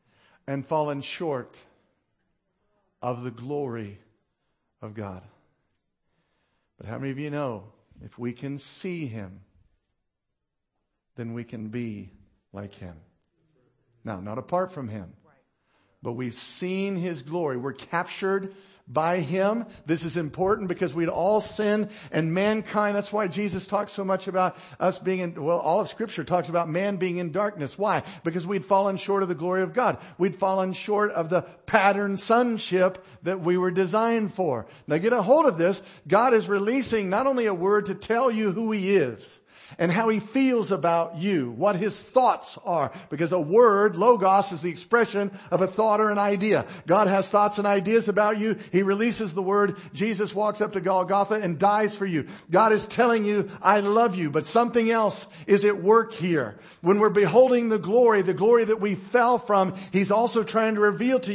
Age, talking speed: 60-79, 180 wpm